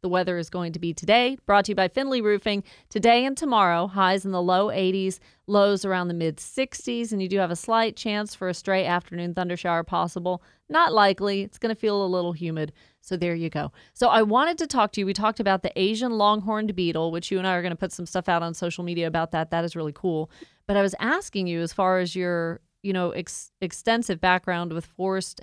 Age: 30-49